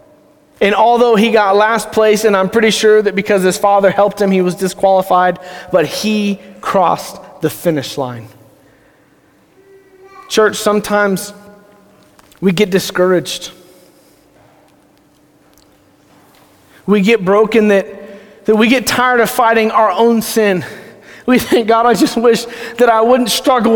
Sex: male